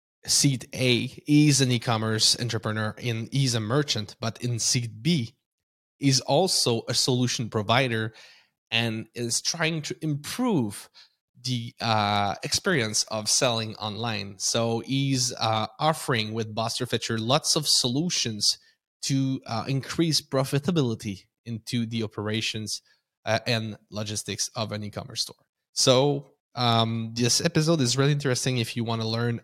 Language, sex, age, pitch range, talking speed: English, male, 20-39, 110-140 Hz, 135 wpm